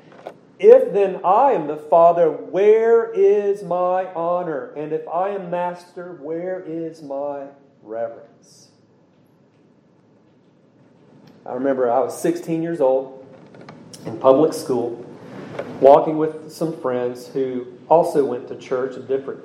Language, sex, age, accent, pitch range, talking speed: English, male, 40-59, American, 120-160 Hz, 125 wpm